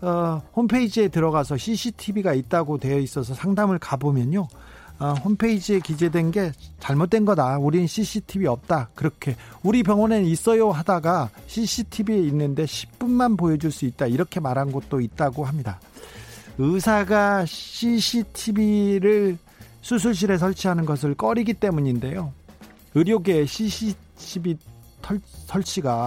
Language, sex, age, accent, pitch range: Korean, male, 40-59, native, 135-210 Hz